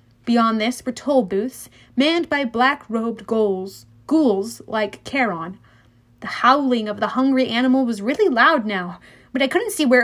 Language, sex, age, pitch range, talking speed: English, female, 30-49, 215-315 Hz, 165 wpm